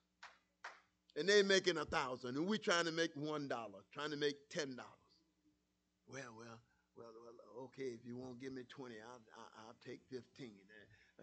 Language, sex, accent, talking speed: English, male, American, 165 wpm